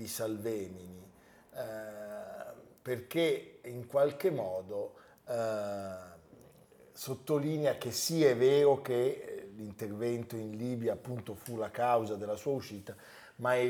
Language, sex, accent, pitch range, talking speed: Italian, male, native, 105-135 Hz, 120 wpm